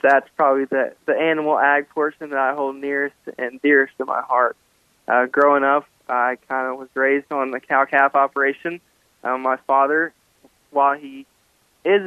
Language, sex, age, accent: English, male, 20-39, American